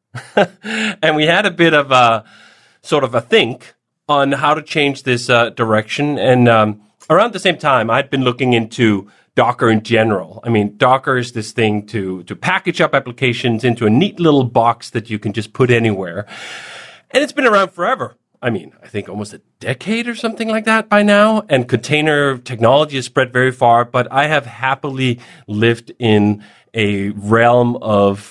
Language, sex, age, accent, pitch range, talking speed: English, male, 30-49, American, 110-175 Hz, 185 wpm